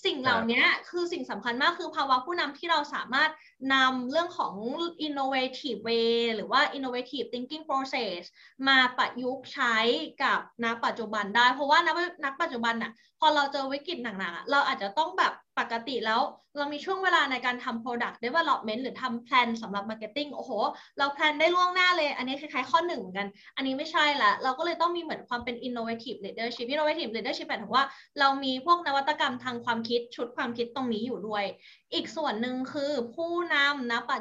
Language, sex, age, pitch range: Thai, female, 20-39, 235-315 Hz